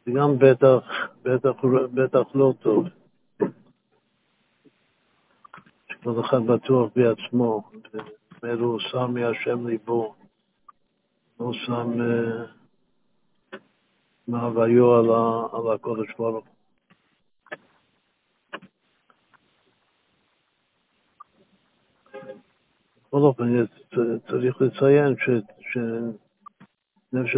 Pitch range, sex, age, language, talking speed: 115-130 Hz, male, 60-79, Hebrew, 45 wpm